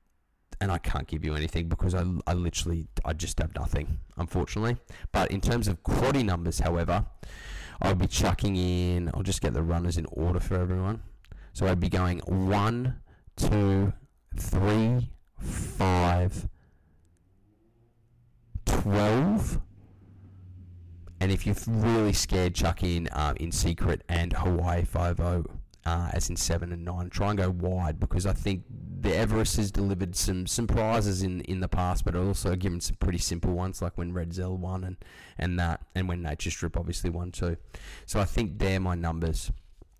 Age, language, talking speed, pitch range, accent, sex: 20-39, English, 165 wpm, 85-105 Hz, Australian, male